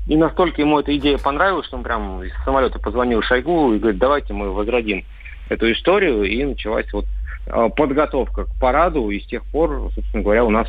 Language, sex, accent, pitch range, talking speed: Russian, male, native, 90-135 Hz, 190 wpm